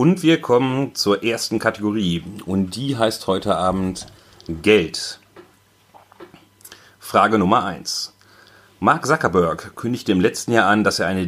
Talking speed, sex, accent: 135 wpm, male, German